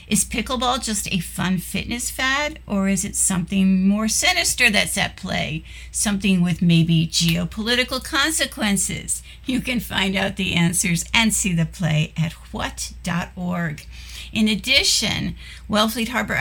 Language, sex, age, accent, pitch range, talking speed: English, female, 60-79, American, 175-225 Hz, 135 wpm